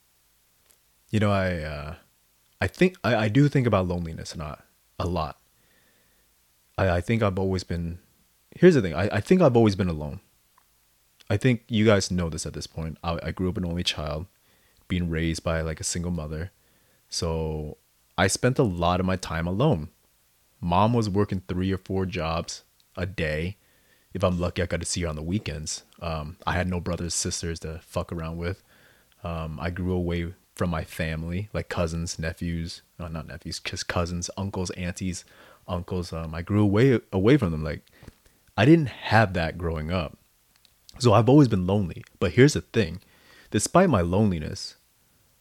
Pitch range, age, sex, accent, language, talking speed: 80-105 Hz, 30-49, male, American, English, 180 wpm